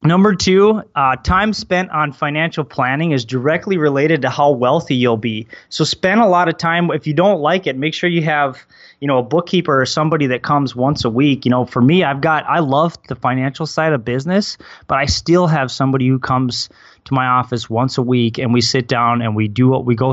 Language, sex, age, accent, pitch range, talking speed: English, male, 20-39, American, 115-140 Hz, 235 wpm